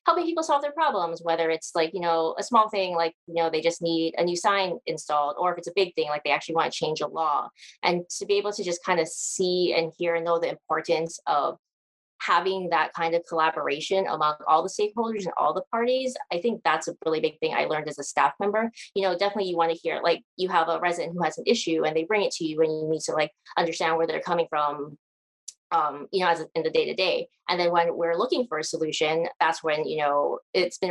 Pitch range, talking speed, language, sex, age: 160-195 Hz, 260 wpm, English, female, 20-39